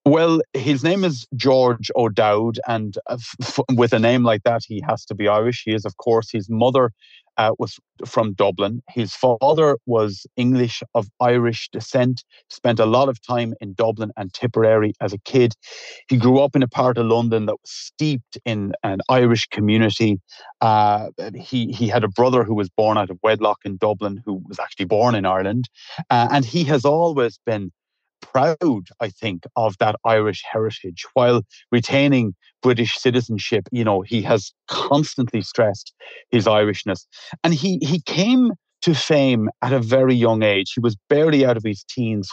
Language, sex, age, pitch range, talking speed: English, male, 30-49, 105-125 Hz, 175 wpm